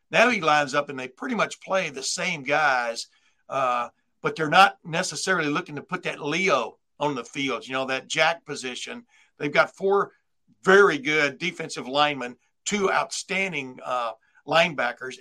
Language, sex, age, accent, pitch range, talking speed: English, male, 60-79, American, 135-160 Hz, 160 wpm